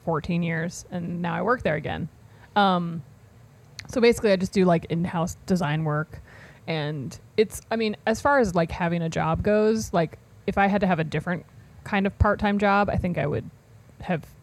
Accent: American